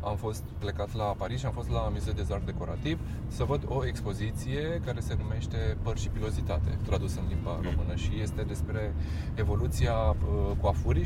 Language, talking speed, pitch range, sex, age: Romanian, 175 wpm, 85-115 Hz, male, 20-39